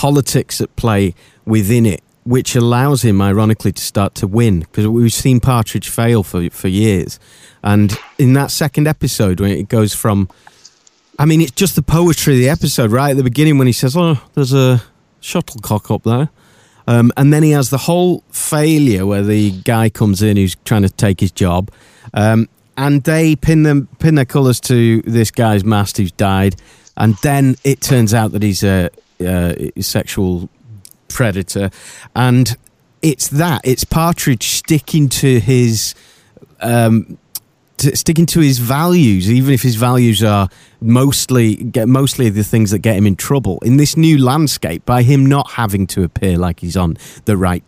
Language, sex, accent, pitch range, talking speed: English, male, British, 105-140 Hz, 175 wpm